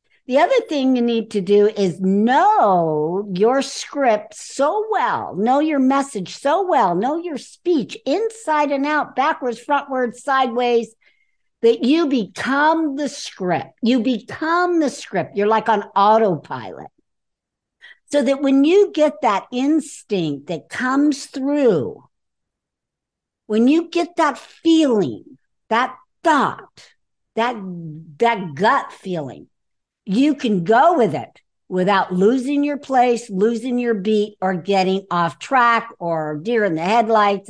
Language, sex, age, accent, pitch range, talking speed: English, female, 60-79, American, 195-285 Hz, 130 wpm